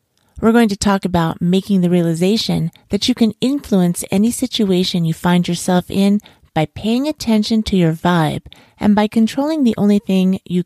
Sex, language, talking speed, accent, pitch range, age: female, English, 175 wpm, American, 165-215 Hz, 40-59